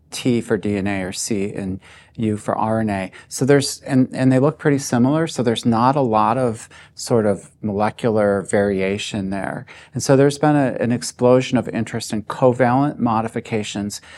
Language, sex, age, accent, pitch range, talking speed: English, male, 40-59, American, 100-125 Hz, 170 wpm